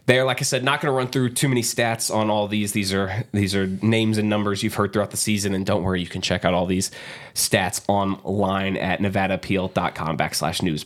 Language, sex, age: English, male, 20-39